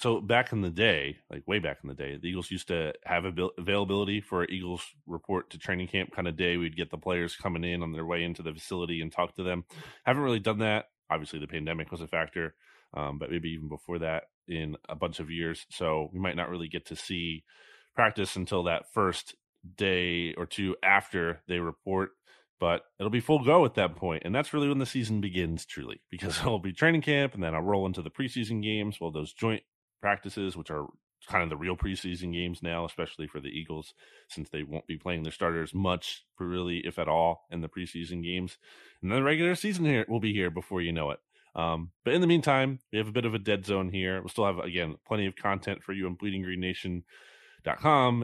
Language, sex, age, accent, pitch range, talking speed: English, male, 30-49, American, 85-100 Hz, 230 wpm